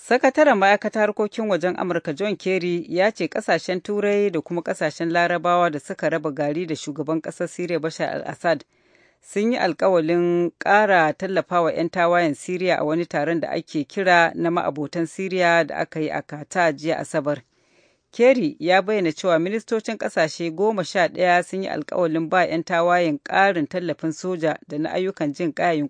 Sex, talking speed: female, 155 wpm